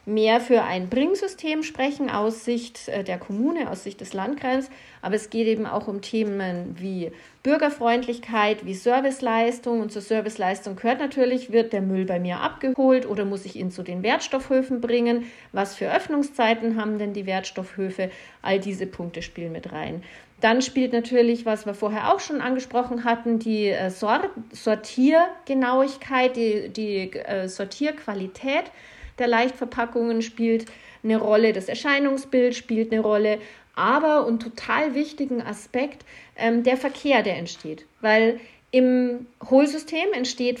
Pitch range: 210-260 Hz